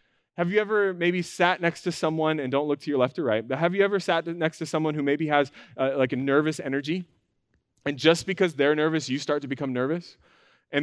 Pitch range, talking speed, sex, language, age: 135-170 Hz, 240 wpm, male, English, 20-39